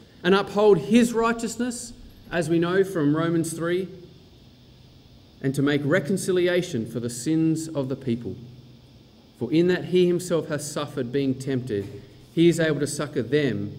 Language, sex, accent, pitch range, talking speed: English, male, Australian, 125-180 Hz, 150 wpm